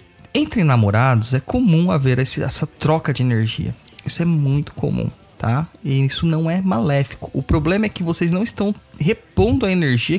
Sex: male